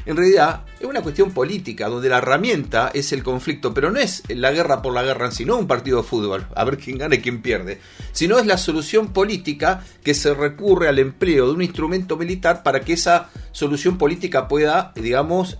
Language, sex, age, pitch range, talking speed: Spanish, male, 40-59, 125-175 Hz, 210 wpm